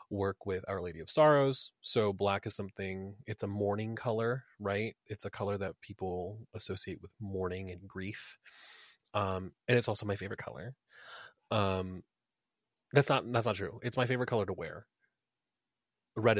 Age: 30-49